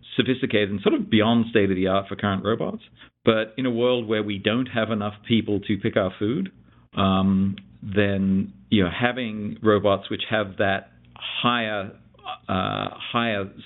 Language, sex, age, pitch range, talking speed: English, male, 50-69, 95-110 Hz, 155 wpm